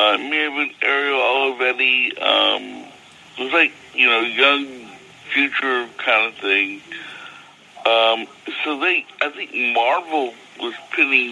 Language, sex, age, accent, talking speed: English, male, 60-79, American, 140 wpm